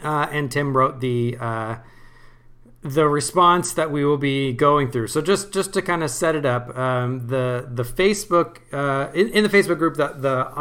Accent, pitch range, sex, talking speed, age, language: American, 120-150 Hz, male, 200 wpm, 40-59, English